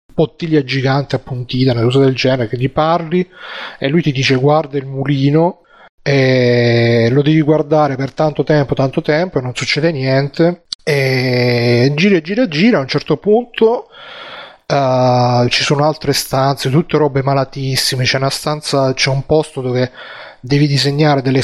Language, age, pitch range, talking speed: Italian, 30-49, 130-150 Hz, 155 wpm